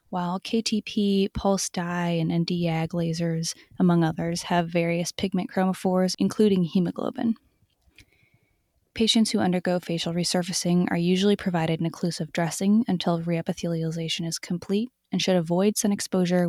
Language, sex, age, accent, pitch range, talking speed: English, female, 20-39, American, 170-195 Hz, 125 wpm